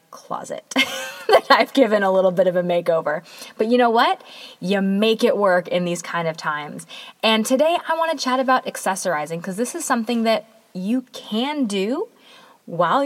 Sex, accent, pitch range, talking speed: female, American, 170-250 Hz, 185 wpm